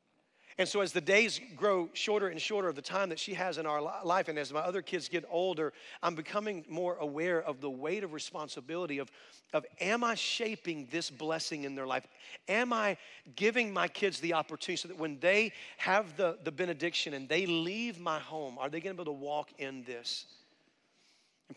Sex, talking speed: male, 210 wpm